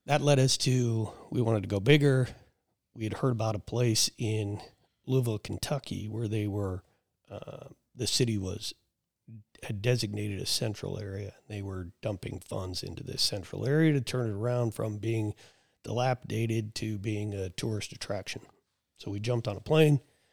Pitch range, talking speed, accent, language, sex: 105-125 Hz, 165 wpm, American, English, male